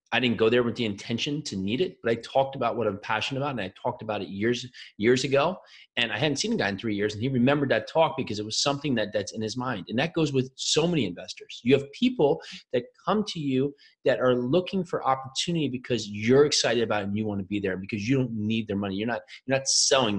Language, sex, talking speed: English, male, 270 wpm